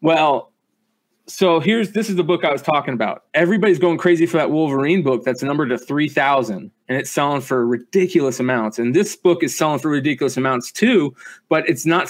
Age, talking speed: 30-49, 200 wpm